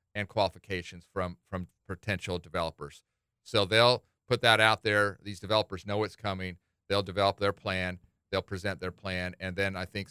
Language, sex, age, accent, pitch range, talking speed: English, male, 40-59, American, 85-100 Hz, 170 wpm